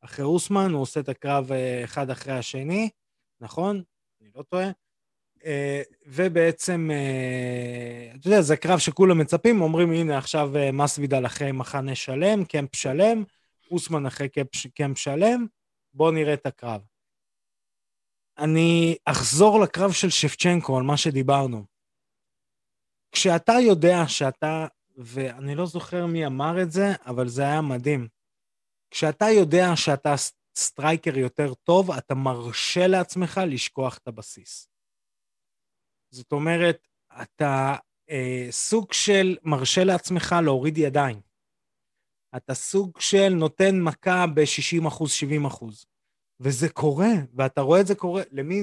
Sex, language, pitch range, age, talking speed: male, Hebrew, 135-175 Hz, 20-39, 120 wpm